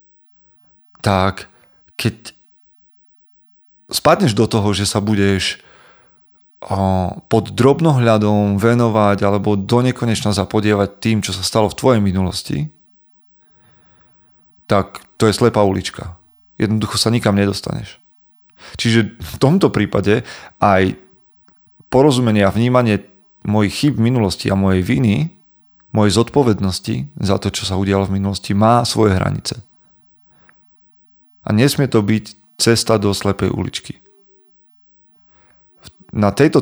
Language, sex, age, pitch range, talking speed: Slovak, male, 40-59, 100-115 Hz, 110 wpm